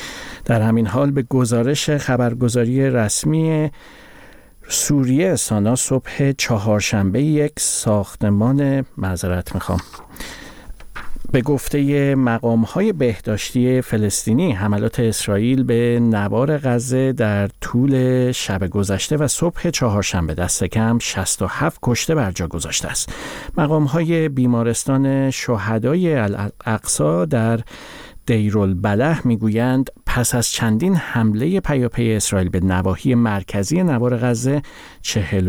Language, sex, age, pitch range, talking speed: Persian, male, 50-69, 100-130 Hz, 105 wpm